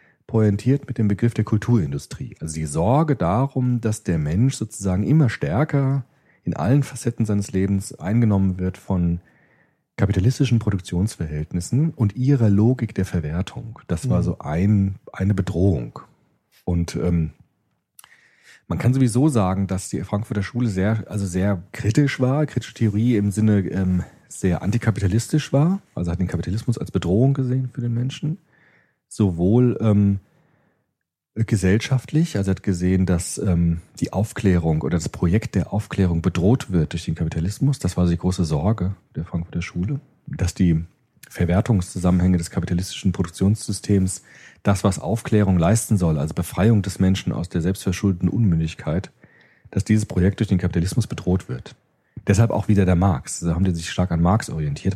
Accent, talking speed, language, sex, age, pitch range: German, 150 wpm, German, male, 40-59, 90-115 Hz